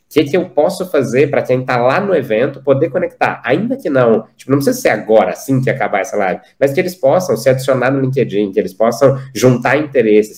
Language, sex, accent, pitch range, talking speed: Portuguese, male, Brazilian, 110-140 Hz, 230 wpm